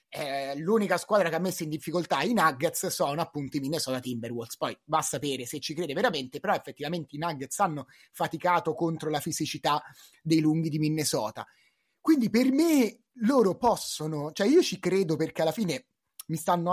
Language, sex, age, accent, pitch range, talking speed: Italian, male, 30-49, native, 145-190 Hz, 175 wpm